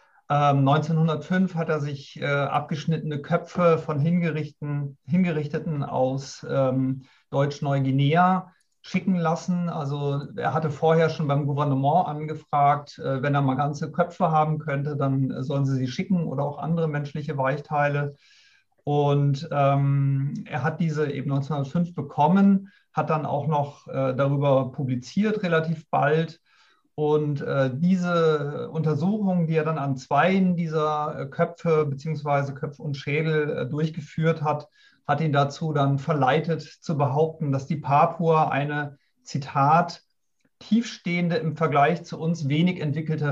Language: German